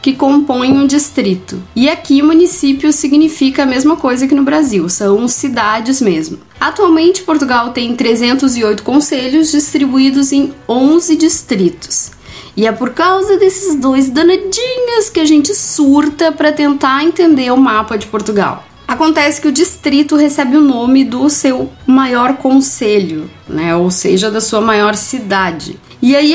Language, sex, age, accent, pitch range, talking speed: Portuguese, female, 20-39, Brazilian, 225-295 Hz, 145 wpm